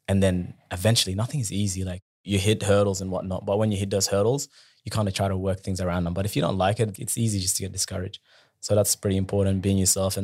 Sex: male